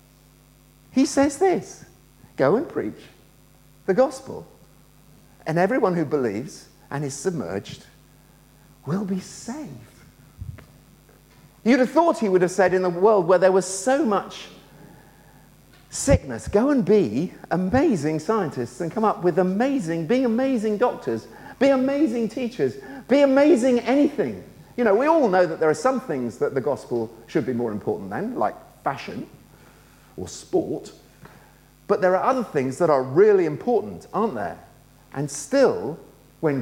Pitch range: 140-220 Hz